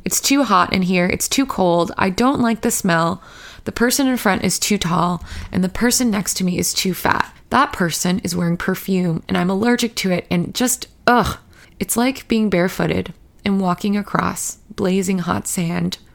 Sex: female